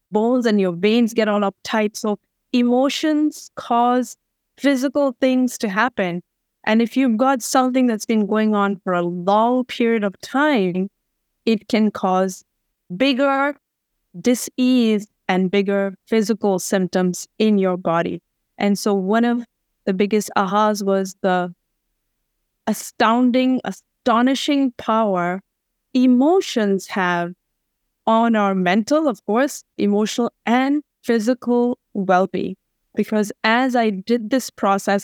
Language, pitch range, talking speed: English, 195-235 Hz, 120 wpm